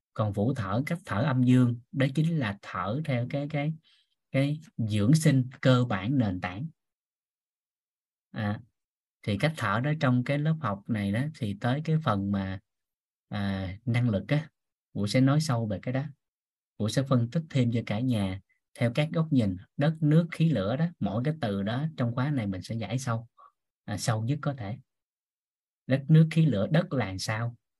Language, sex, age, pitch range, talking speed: Vietnamese, male, 20-39, 105-140 Hz, 190 wpm